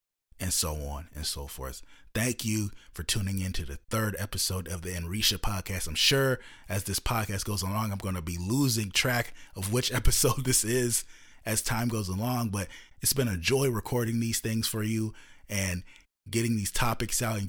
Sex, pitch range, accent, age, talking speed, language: male, 80-105 Hz, American, 30-49, 195 wpm, English